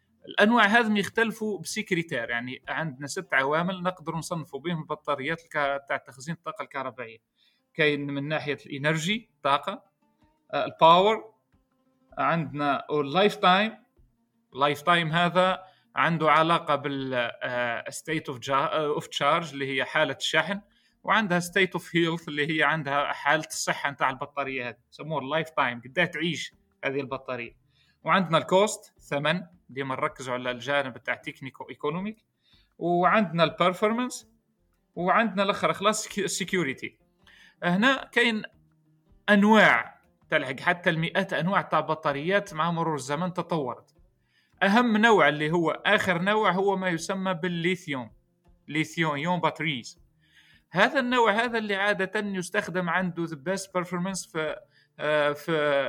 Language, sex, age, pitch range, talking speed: Arabic, male, 30-49, 145-195 Hz, 120 wpm